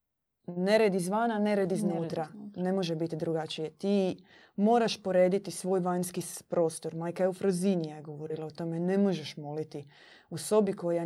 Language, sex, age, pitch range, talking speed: Croatian, female, 20-39, 170-200 Hz, 155 wpm